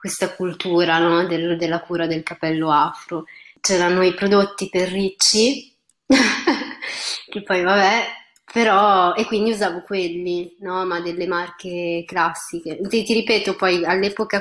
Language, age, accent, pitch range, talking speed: Italian, 20-39, native, 170-195 Hz, 135 wpm